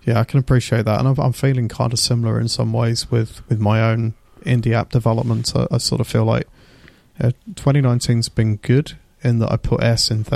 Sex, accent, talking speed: male, British, 215 wpm